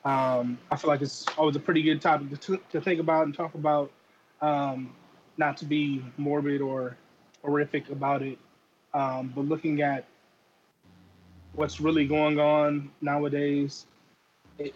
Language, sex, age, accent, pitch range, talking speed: English, male, 20-39, American, 130-150 Hz, 145 wpm